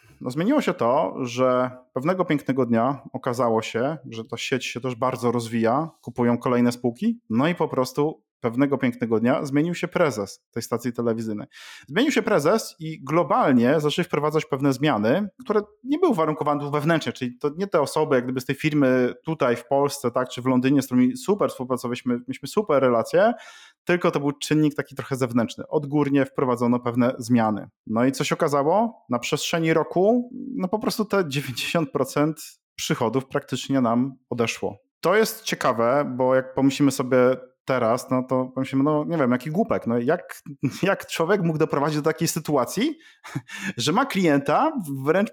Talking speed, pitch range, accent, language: 170 wpm, 130-165 Hz, native, Polish